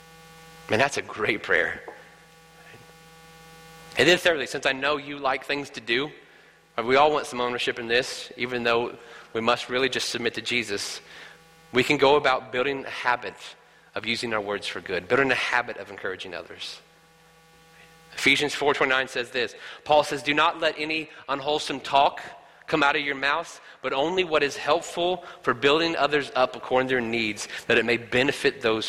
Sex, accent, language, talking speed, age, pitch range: male, American, English, 180 wpm, 30-49, 130-165 Hz